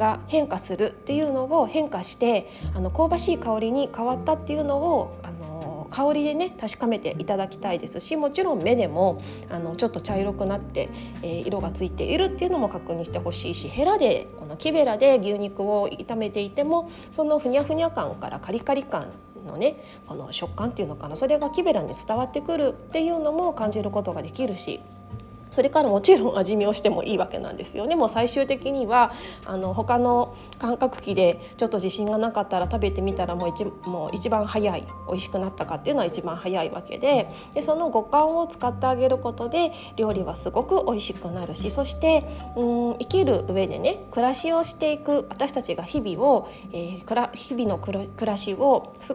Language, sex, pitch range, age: Japanese, female, 200-300 Hz, 20-39